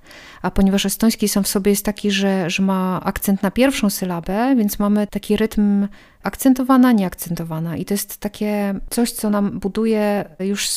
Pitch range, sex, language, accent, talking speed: 185-215 Hz, female, Polish, native, 165 wpm